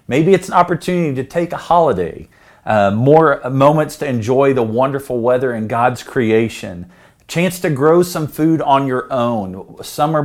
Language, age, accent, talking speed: English, 40-59, American, 165 wpm